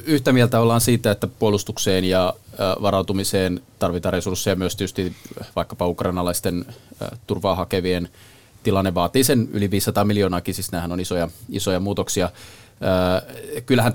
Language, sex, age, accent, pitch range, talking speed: Finnish, male, 30-49, native, 90-115 Hz, 120 wpm